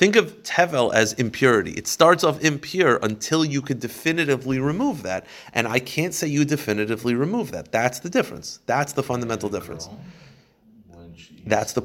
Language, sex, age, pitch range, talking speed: English, male, 30-49, 130-160 Hz, 160 wpm